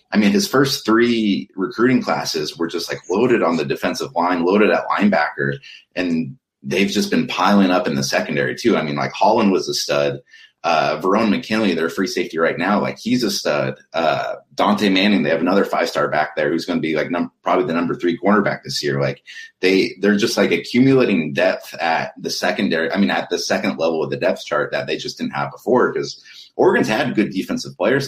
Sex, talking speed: male, 220 wpm